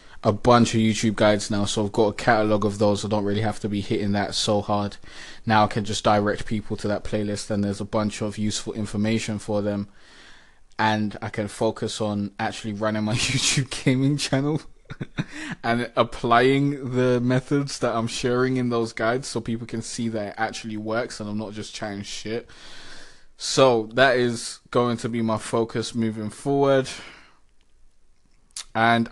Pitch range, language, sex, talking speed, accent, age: 105-125 Hz, English, male, 180 wpm, British, 20-39